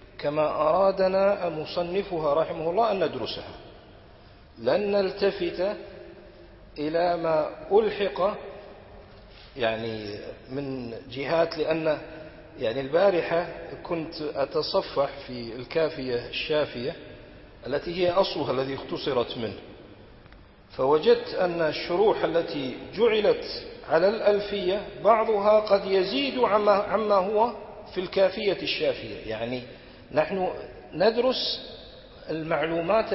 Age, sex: 50-69, male